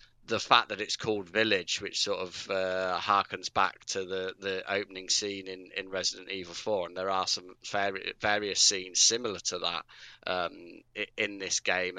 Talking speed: 180 wpm